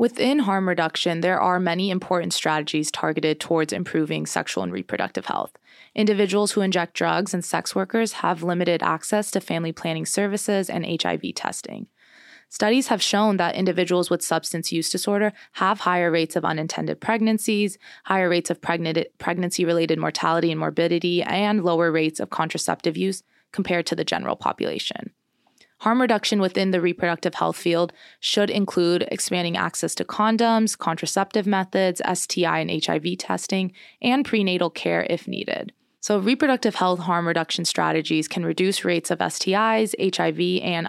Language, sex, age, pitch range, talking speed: English, female, 20-39, 170-205 Hz, 150 wpm